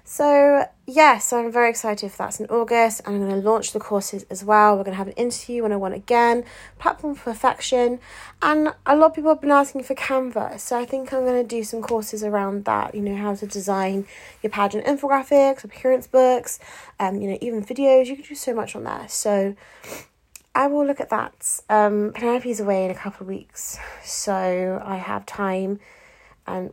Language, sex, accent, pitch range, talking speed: English, female, British, 200-255 Hz, 210 wpm